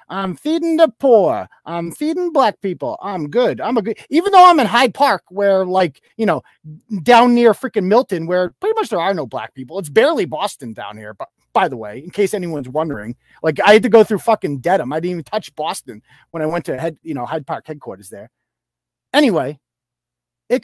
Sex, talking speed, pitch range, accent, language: male, 215 wpm, 135-215 Hz, American, English